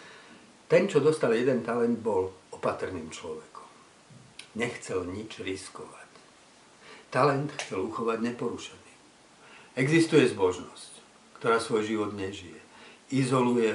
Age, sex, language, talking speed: 60-79, male, Slovak, 95 wpm